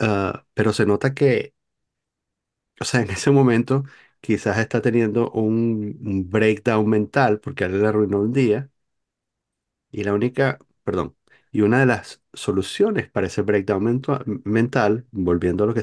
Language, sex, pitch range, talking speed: Spanish, male, 85-115 Hz, 150 wpm